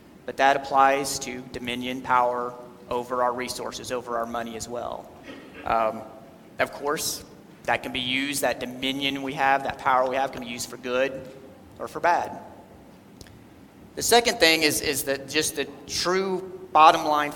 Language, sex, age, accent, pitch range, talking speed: English, male, 30-49, American, 125-150 Hz, 165 wpm